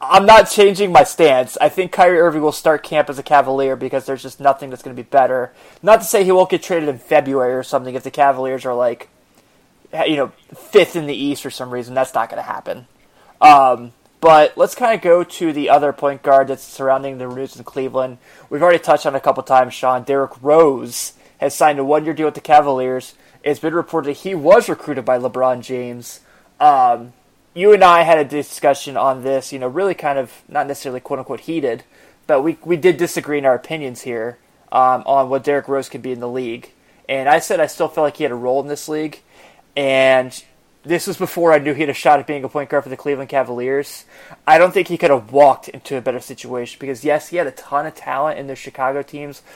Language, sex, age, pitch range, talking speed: English, male, 20-39, 130-160 Hz, 235 wpm